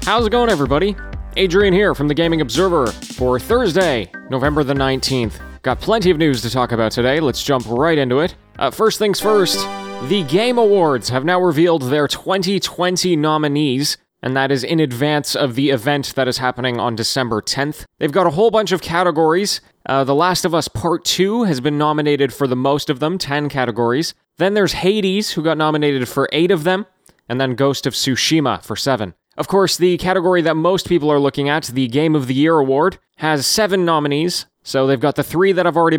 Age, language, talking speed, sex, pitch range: 20-39, English, 205 wpm, male, 130-175 Hz